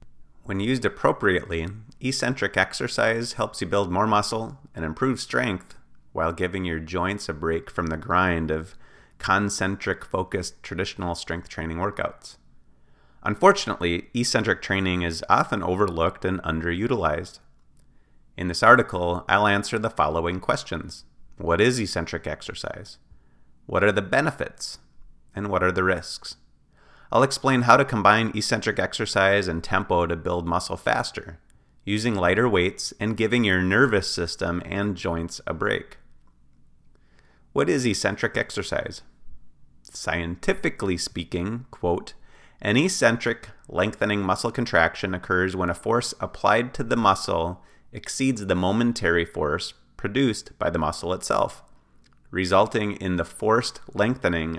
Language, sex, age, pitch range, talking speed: English, male, 30-49, 85-110 Hz, 130 wpm